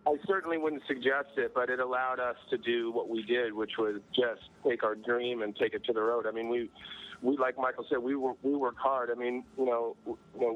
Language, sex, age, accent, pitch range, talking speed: English, male, 30-49, American, 115-130 Hz, 245 wpm